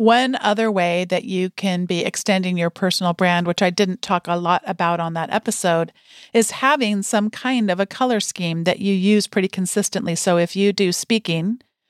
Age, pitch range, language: 40-59, 180-220 Hz, English